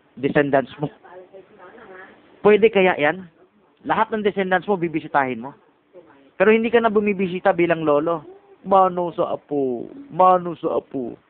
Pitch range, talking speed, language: 165-220 Hz, 125 wpm, Filipino